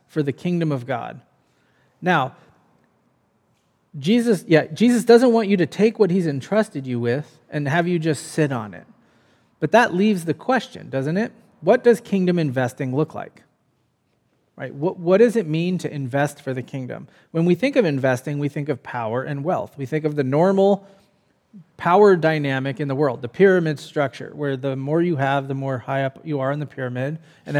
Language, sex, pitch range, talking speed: English, male, 135-180 Hz, 195 wpm